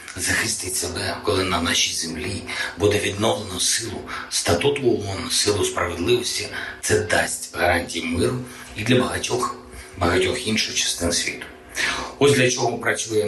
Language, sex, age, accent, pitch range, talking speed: Ukrainian, male, 50-69, native, 85-115 Hz, 125 wpm